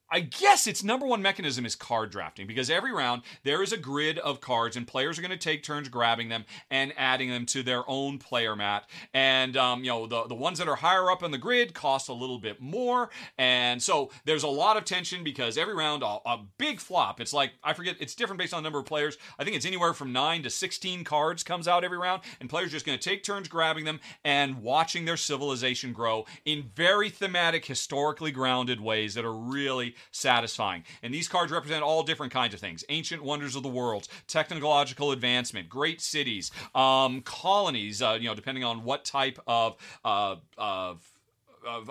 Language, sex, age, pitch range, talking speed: English, male, 40-59, 125-175 Hz, 215 wpm